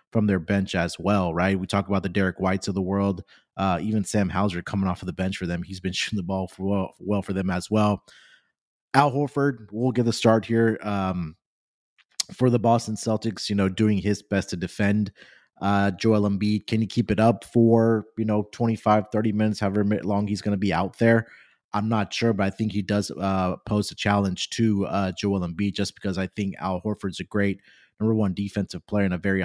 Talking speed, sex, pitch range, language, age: 225 wpm, male, 95-110 Hz, English, 30-49